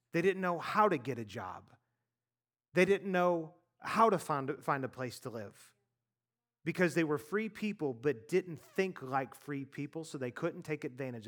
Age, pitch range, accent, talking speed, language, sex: 30-49, 125-190 Hz, American, 180 wpm, English, male